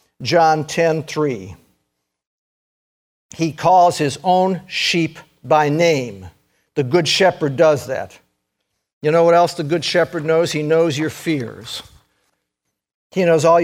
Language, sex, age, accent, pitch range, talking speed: English, male, 50-69, American, 140-185 Hz, 130 wpm